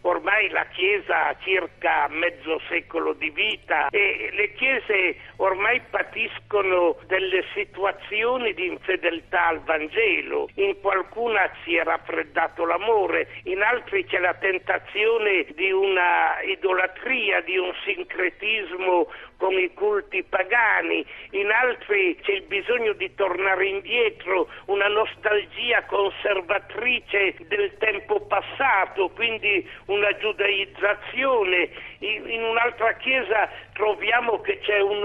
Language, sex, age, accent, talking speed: Italian, male, 60-79, native, 115 wpm